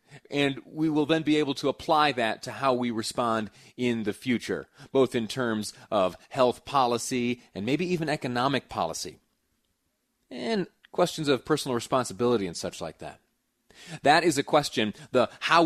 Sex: male